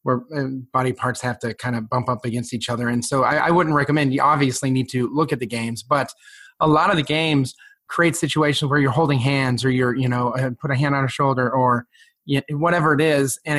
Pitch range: 125-150 Hz